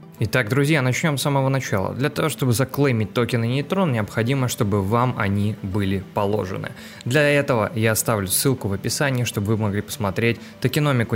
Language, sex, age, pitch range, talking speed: Russian, male, 20-39, 110-140 Hz, 160 wpm